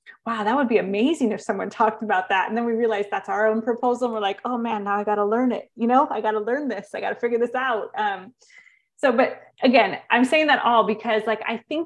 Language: English